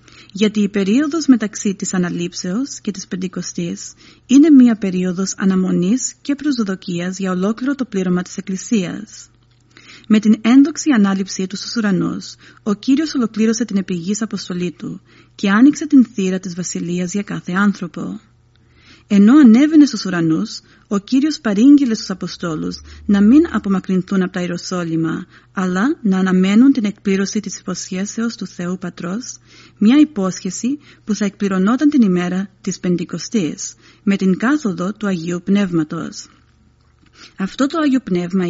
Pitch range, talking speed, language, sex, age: 180-230 Hz, 135 wpm, Greek, female, 40-59